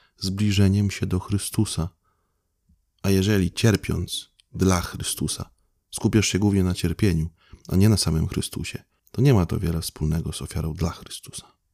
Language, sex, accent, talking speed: Polish, male, native, 150 wpm